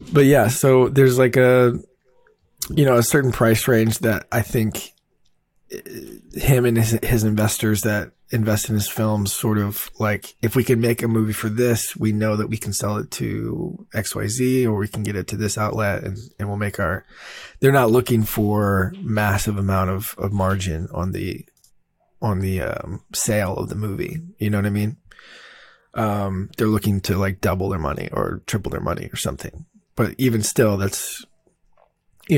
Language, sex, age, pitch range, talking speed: English, male, 20-39, 100-120 Hz, 185 wpm